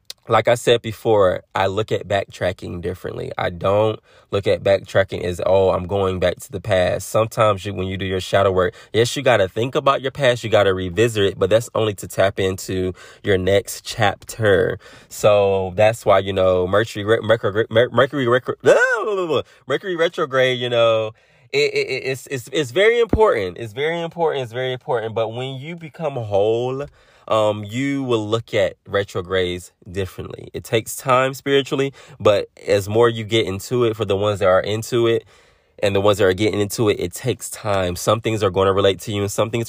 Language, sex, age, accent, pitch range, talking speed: English, male, 20-39, American, 95-120 Hz, 195 wpm